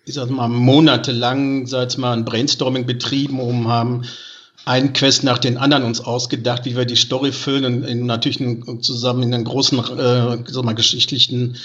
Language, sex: German, male